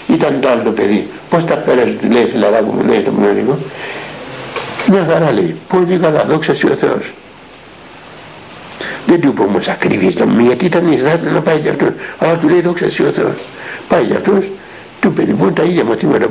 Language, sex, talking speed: Greek, male, 190 wpm